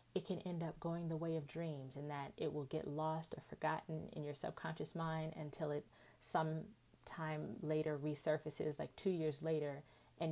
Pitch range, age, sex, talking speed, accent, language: 150-175 Hz, 30-49, female, 185 wpm, American, English